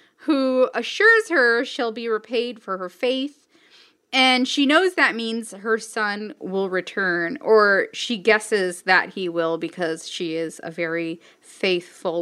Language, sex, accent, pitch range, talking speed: English, female, American, 200-260 Hz, 145 wpm